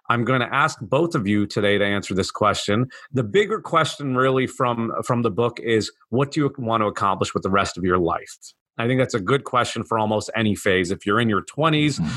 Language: English